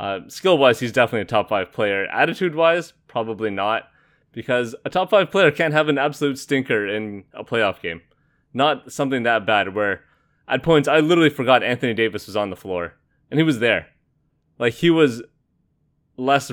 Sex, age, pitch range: male, 20-39, 110-140 Hz